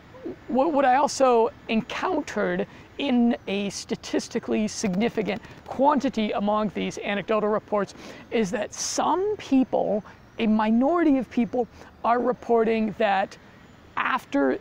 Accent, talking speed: American, 105 wpm